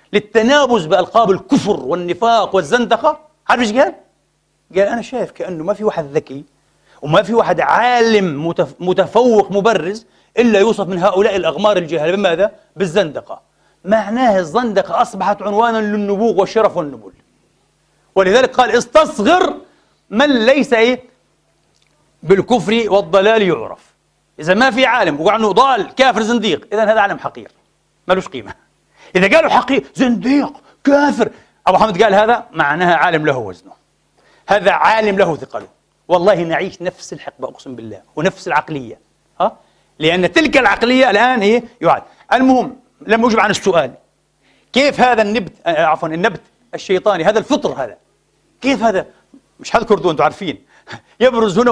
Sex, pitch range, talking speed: male, 180-240 Hz, 135 wpm